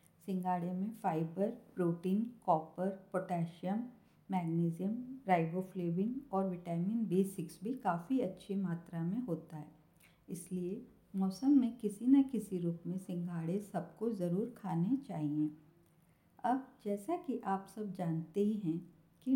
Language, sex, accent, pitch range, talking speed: Hindi, female, native, 170-215 Hz, 125 wpm